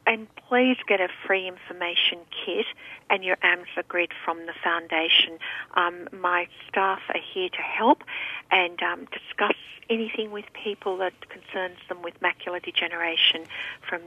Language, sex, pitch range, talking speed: English, female, 190-265 Hz, 145 wpm